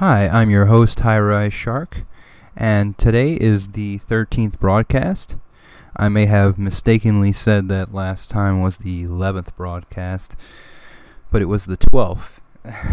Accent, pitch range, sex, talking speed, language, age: American, 95-105 Hz, male, 135 wpm, English, 20-39